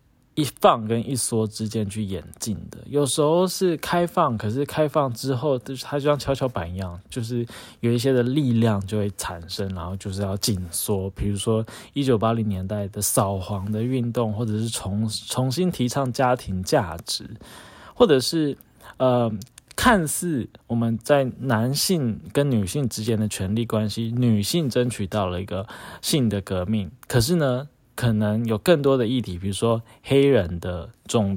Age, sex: 20-39, male